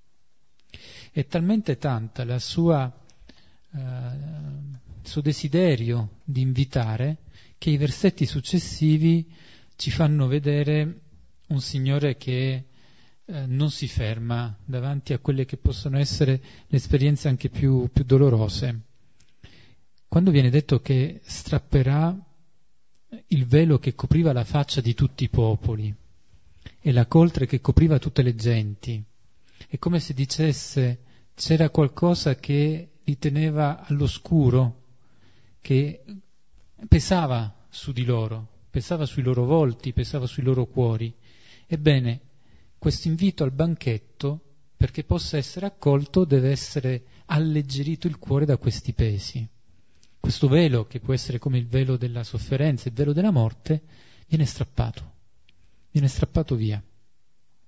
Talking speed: 120 wpm